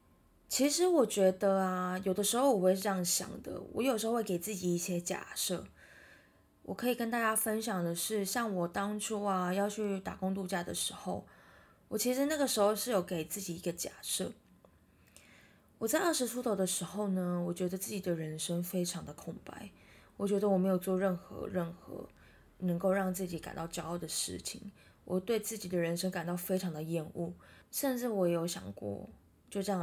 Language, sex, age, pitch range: Chinese, female, 20-39, 175-210 Hz